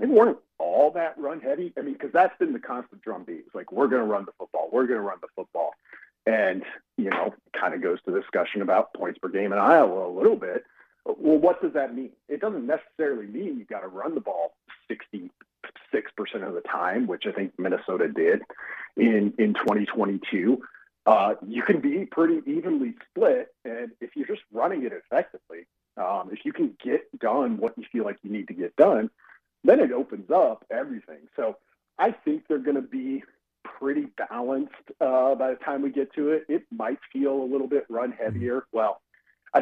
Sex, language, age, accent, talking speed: male, English, 40-59, American, 205 wpm